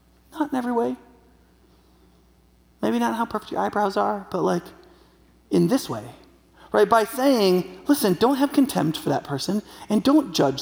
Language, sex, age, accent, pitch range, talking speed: English, male, 30-49, American, 175-250 Hz, 165 wpm